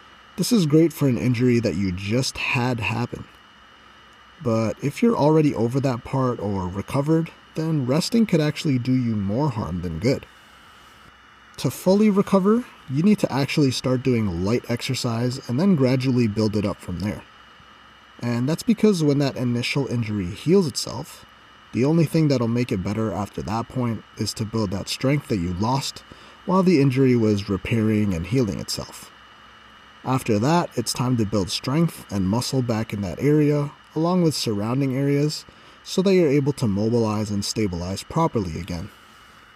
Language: English